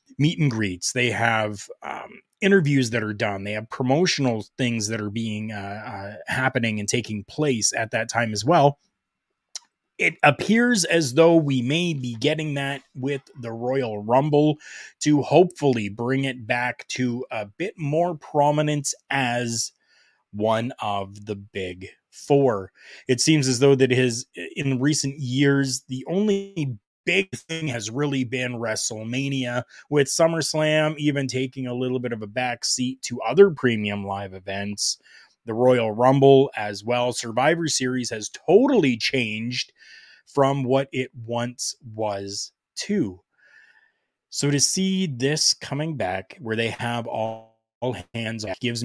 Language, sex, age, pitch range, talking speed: English, male, 30-49, 115-140 Hz, 145 wpm